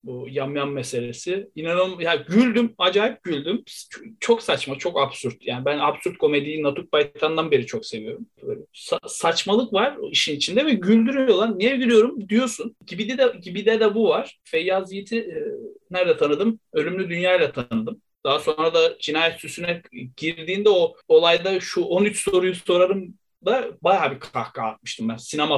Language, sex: Turkish, male